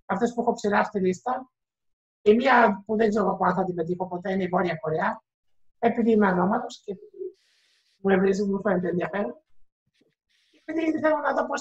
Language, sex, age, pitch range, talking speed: Greek, male, 60-79, 180-235 Hz, 175 wpm